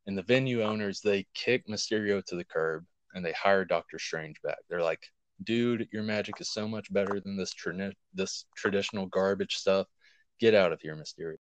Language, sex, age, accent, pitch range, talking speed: English, male, 20-39, American, 90-105 Hz, 195 wpm